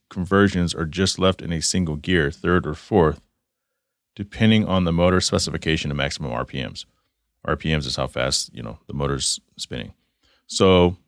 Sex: male